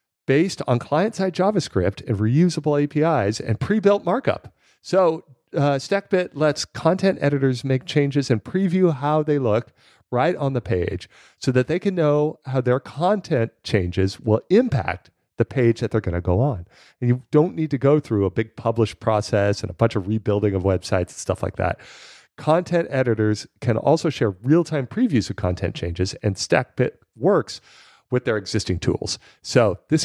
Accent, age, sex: American, 40-59, male